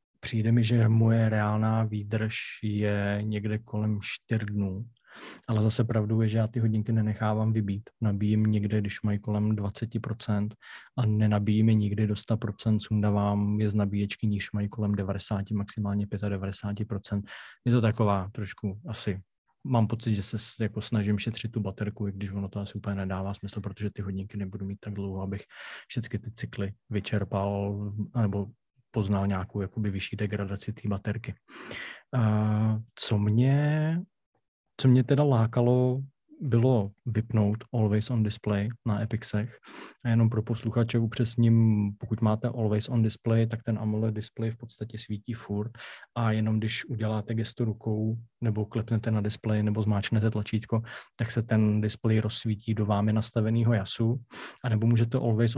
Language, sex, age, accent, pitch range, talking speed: Czech, male, 20-39, native, 105-115 Hz, 155 wpm